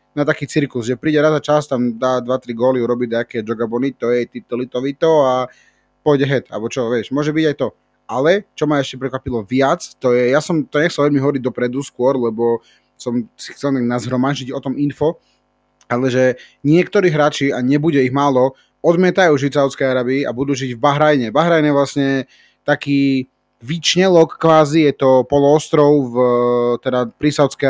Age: 30-49